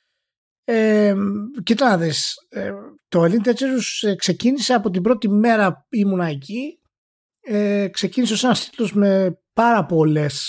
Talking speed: 120 wpm